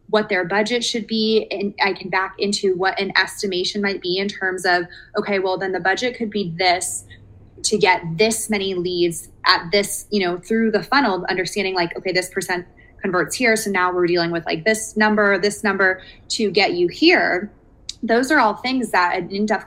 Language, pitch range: English, 180-210 Hz